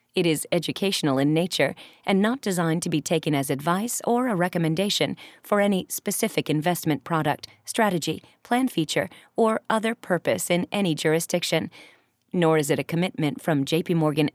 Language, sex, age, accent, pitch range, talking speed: English, female, 40-59, American, 155-200 Hz, 160 wpm